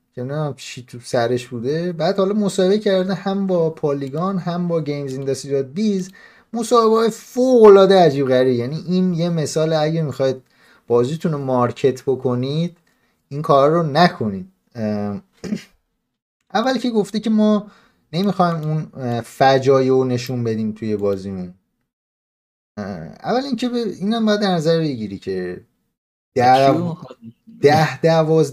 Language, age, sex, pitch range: Persian, 30-49, male, 120-165 Hz